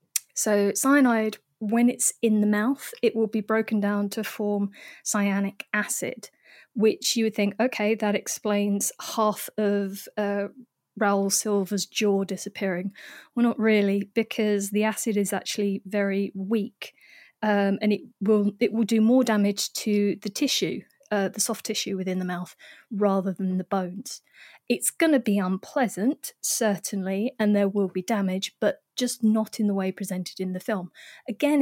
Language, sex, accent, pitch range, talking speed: English, female, British, 200-230 Hz, 160 wpm